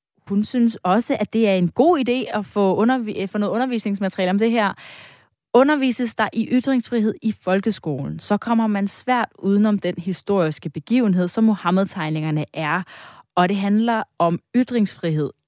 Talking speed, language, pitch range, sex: 155 wpm, Danish, 175-230 Hz, female